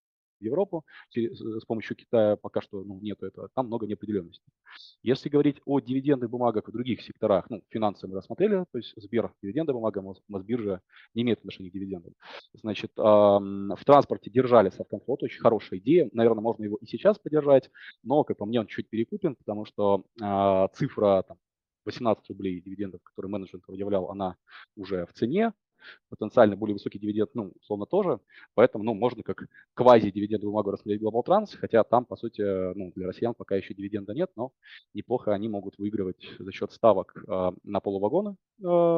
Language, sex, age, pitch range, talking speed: Turkish, male, 20-39, 100-120 Hz, 170 wpm